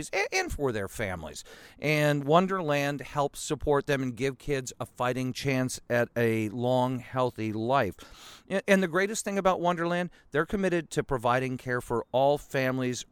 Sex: male